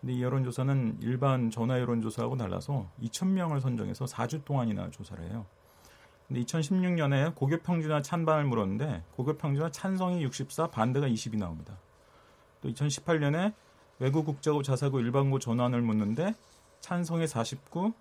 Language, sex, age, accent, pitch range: Korean, male, 40-59, native, 115-155 Hz